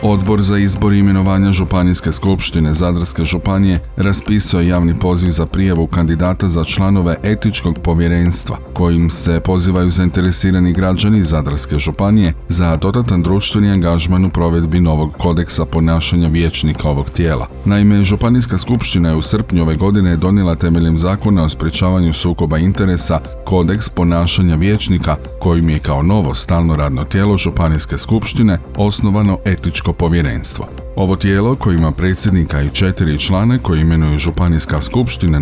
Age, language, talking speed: 40-59, Croatian, 135 wpm